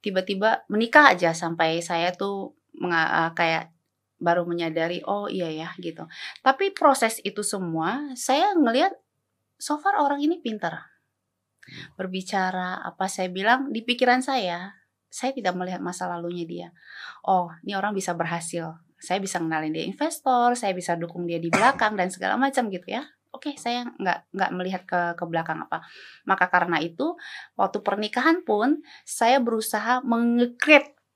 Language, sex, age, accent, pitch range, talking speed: Indonesian, female, 20-39, native, 180-265 Hz, 150 wpm